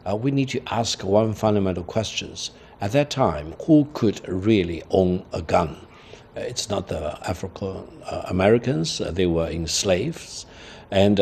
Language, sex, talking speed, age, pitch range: English, male, 140 wpm, 60-79, 90-115 Hz